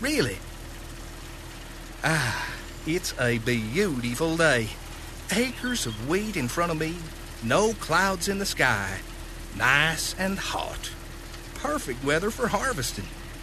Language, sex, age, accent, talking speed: English, male, 50-69, American, 110 wpm